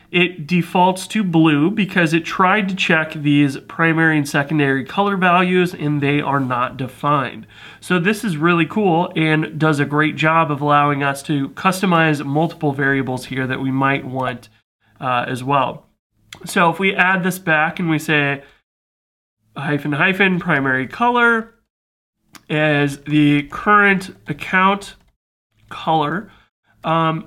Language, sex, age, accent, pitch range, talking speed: English, male, 30-49, American, 140-180 Hz, 140 wpm